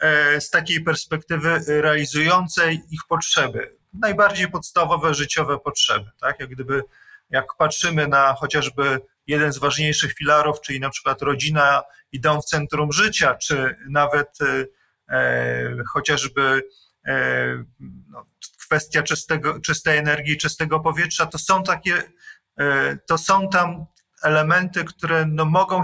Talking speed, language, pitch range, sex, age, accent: 120 wpm, Polish, 140-165 Hz, male, 40-59, native